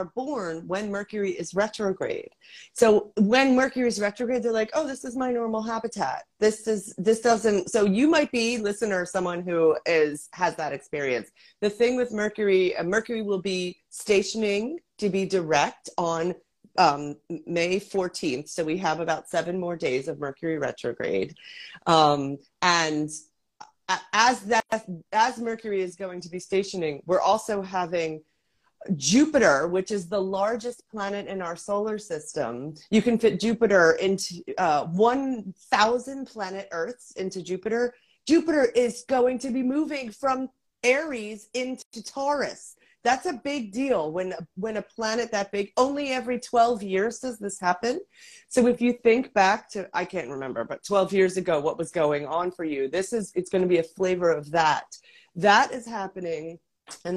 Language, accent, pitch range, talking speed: English, American, 180-240 Hz, 160 wpm